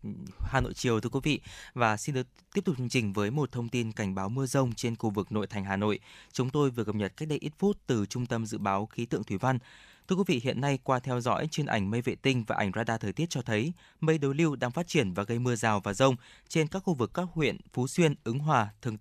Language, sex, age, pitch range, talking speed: Vietnamese, male, 20-39, 110-140 Hz, 280 wpm